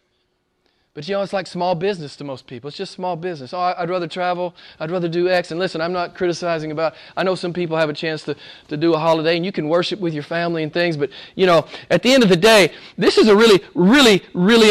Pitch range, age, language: 150-185 Hz, 30-49, English